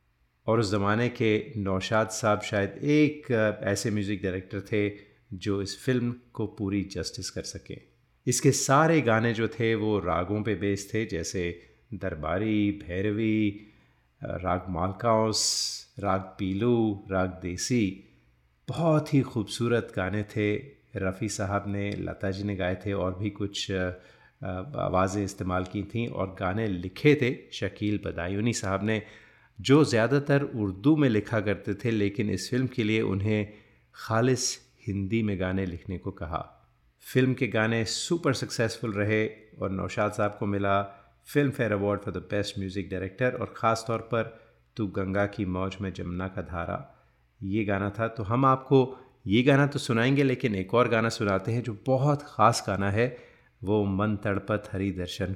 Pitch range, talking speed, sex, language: 95-115 Hz, 155 wpm, male, Hindi